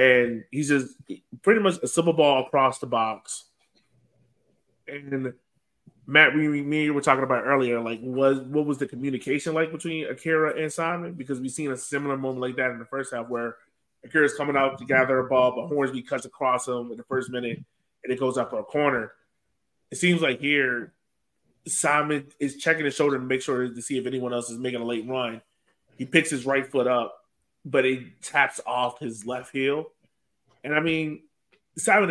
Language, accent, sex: English, American, male